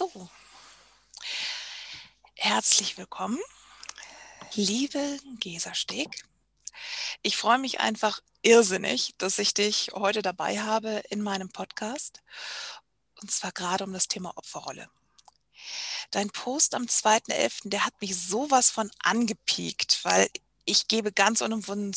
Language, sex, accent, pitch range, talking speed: German, female, German, 200-245 Hz, 110 wpm